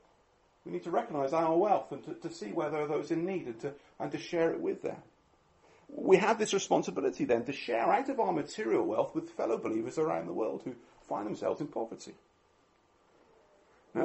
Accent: British